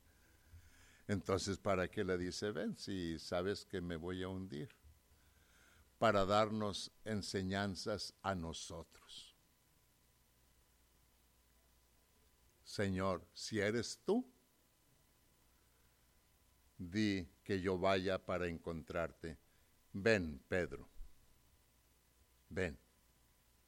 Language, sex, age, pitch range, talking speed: English, male, 60-79, 80-100 Hz, 80 wpm